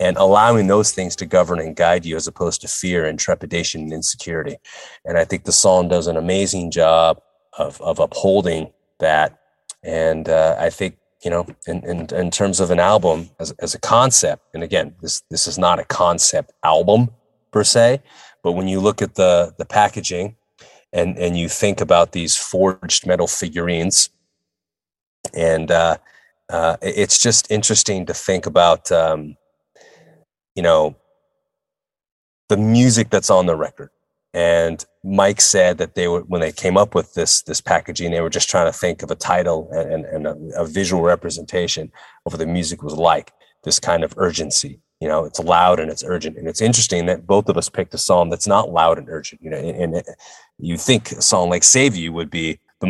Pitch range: 85-100 Hz